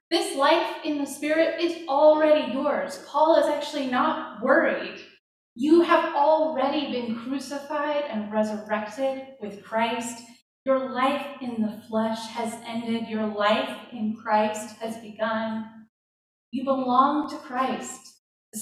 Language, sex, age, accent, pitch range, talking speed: English, female, 20-39, American, 215-275 Hz, 130 wpm